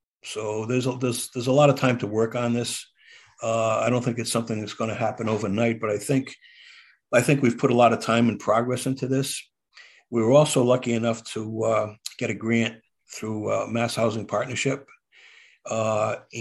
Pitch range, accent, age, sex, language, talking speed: 110-120 Hz, American, 50-69, male, English, 200 wpm